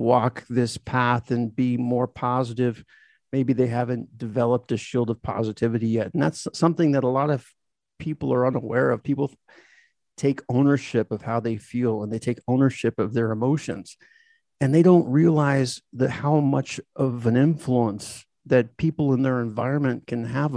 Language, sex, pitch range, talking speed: English, male, 115-145 Hz, 170 wpm